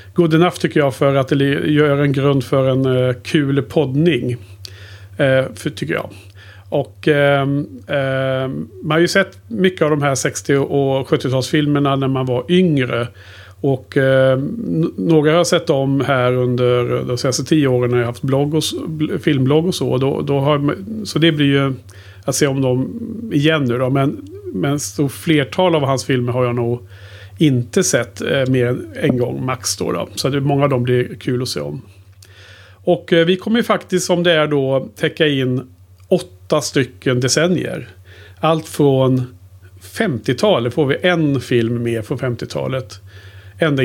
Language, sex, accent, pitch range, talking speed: Swedish, male, Norwegian, 120-155 Hz, 170 wpm